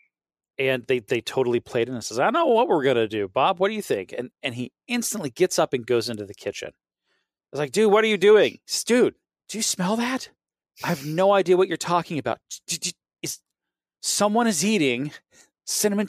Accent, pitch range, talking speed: American, 115-175 Hz, 220 wpm